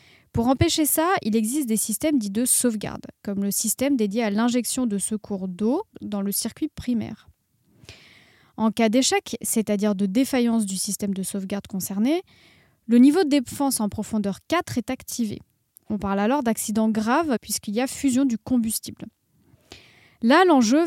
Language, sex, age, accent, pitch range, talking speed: French, female, 20-39, French, 215-270 Hz, 160 wpm